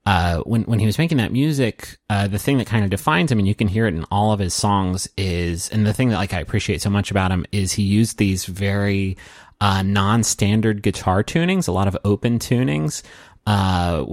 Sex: male